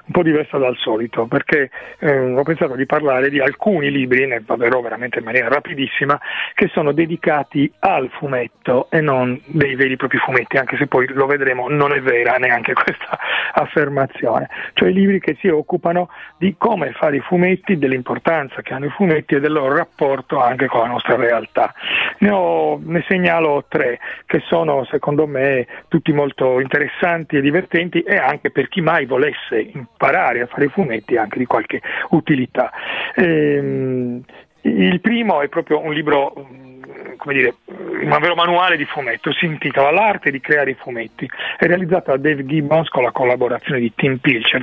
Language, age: Italian, 40-59